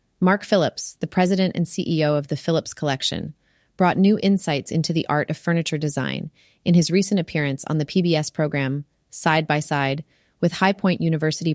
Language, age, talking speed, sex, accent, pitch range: English, 30-49, 175 wpm, female, American, 155-185 Hz